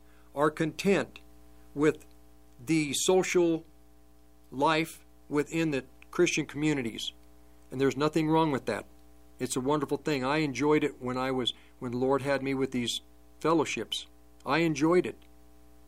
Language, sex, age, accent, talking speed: English, male, 50-69, American, 140 wpm